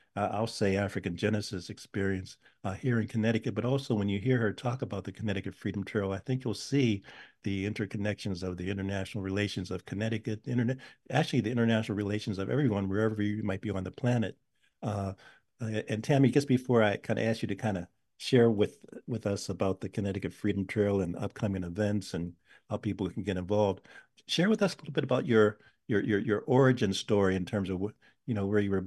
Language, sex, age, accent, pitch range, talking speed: English, male, 50-69, American, 95-115 Hz, 210 wpm